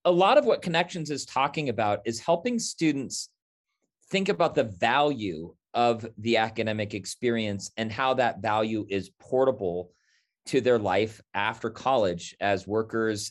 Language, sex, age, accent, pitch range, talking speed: English, male, 30-49, American, 100-150 Hz, 145 wpm